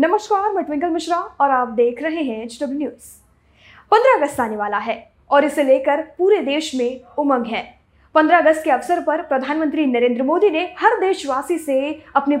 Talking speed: 175 wpm